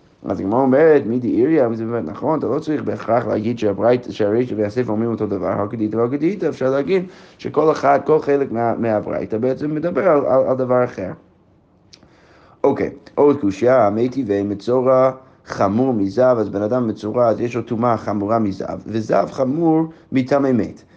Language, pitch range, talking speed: Hebrew, 110-145 Hz, 155 wpm